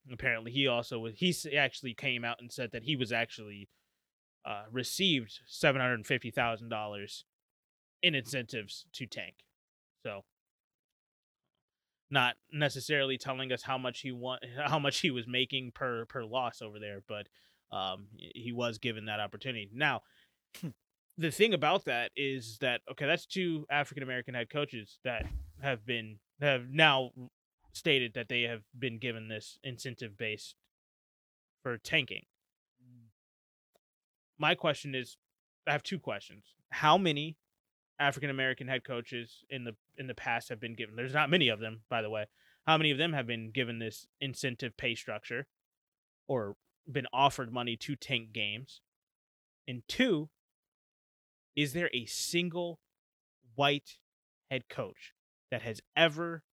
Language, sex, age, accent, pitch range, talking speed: English, male, 20-39, American, 115-140 Hz, 145 wpm